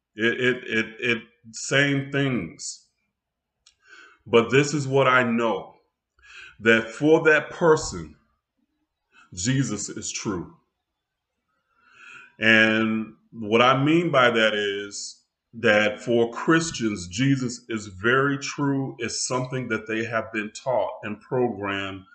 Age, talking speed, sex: 30-49, 115 wpm, male